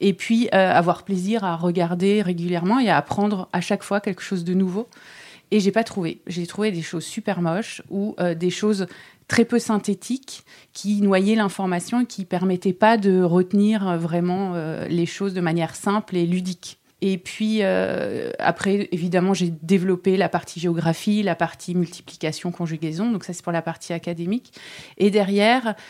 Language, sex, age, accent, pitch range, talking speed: French, female, 30-49, French, 180-210 Hz, 180 wpm